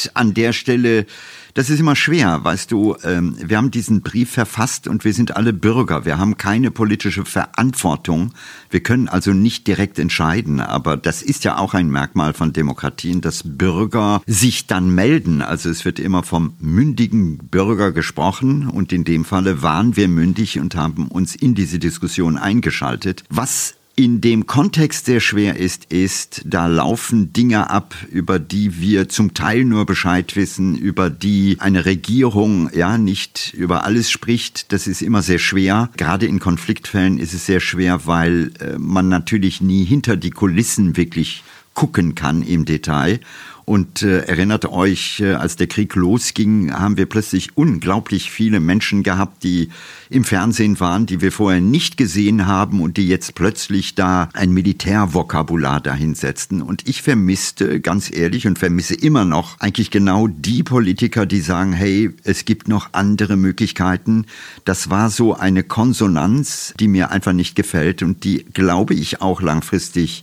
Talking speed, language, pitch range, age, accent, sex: 160 wpm, German, 90-110 Hz, 50-69, German, male